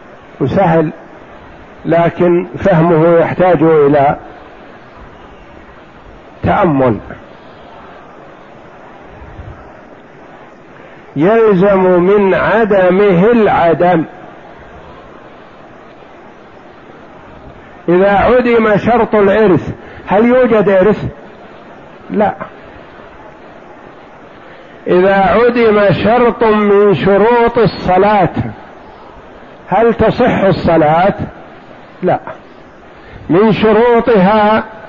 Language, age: Arabic, 50-69